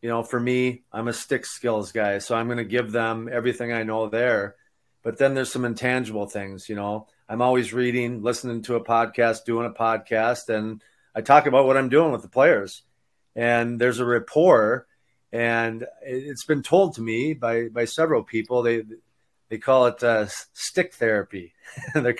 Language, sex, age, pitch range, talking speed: English, male, 40-59, 110-130 Hz, 185 wpm